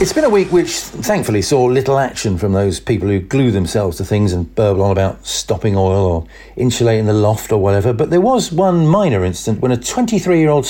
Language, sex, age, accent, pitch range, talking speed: English, male, 50-69, British, 100-140 Hz, 215 wpm